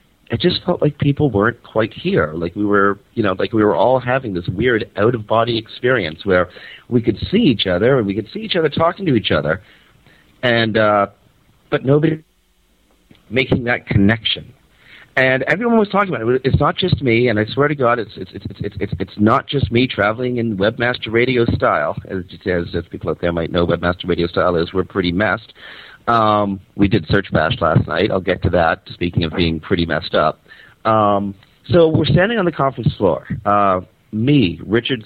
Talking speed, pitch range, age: 200 wpm, 95-130 Hz, 40-59